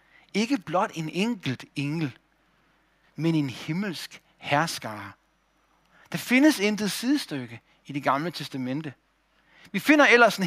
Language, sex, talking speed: Danish, male, 120 wpm